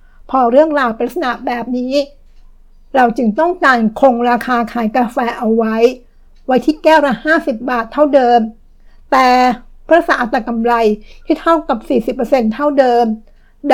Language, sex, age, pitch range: Thai, female, 60-79, 235-280 Hz